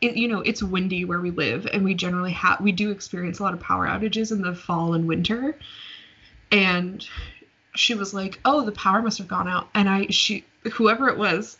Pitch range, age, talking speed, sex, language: 175-210 Hz, 20-39, 215 wpm, female, English